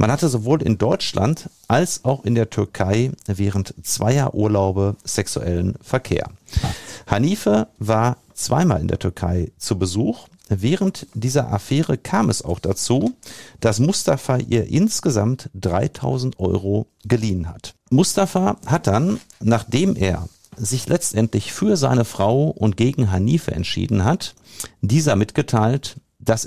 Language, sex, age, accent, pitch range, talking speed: German, male, 50-69, German, 100-135 Hz, 125 wpm